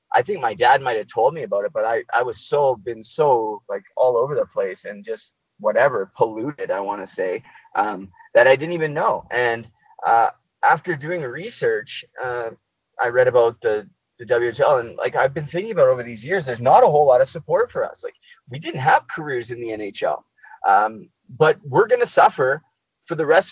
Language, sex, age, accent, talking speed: English, male, 20-39, American, 210 wpm